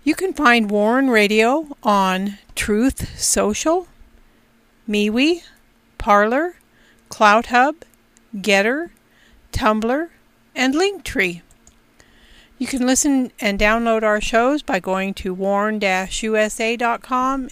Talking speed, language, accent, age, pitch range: 95 wpm, English, American, 50-69, 210-260 Hz